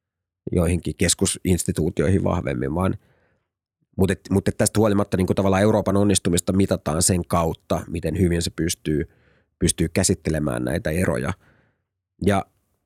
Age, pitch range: 30-49, 90-100 Hz